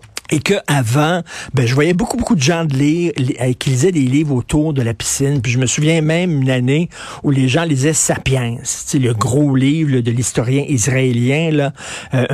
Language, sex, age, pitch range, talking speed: French, male, 50-69, 125-155 Hz, 210 wpm